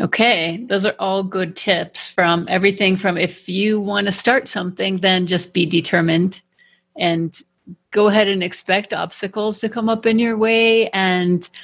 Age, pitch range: 30-49, 175-205 Hz